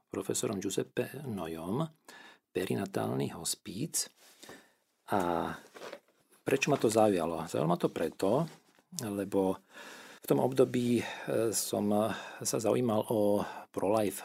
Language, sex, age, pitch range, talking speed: Slovak, male, 50-69, 95-110 Hz, 95 wpm